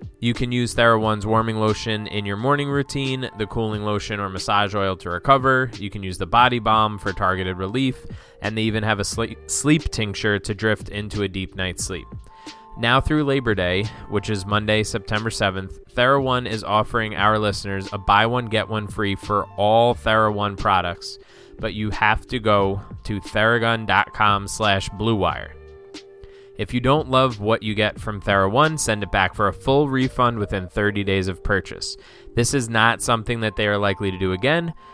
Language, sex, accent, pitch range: English, male, American, 100-125 Hz